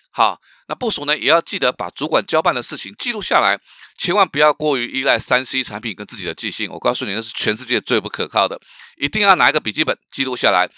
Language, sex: Chinese, male